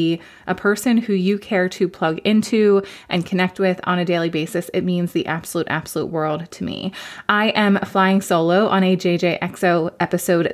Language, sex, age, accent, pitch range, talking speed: English, female, 20-39, American, 180-215 Hz, 175 wpm